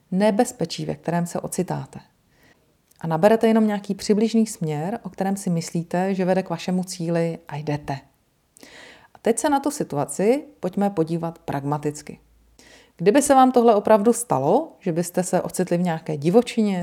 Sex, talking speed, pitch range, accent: female, 155 wpm, 160-210 Hz, native